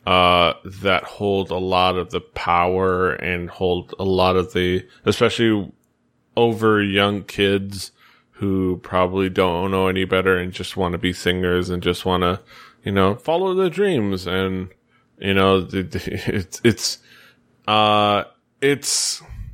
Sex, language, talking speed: male, English, 140 wpm